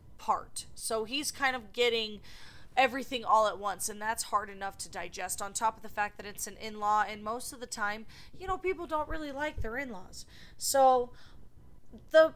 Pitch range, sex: 205-260 Hz, female